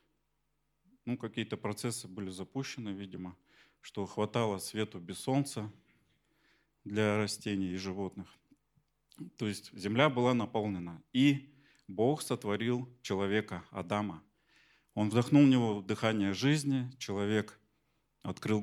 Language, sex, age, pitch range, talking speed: Russian, male, 40-59, 100-130 Hz, 105 wpm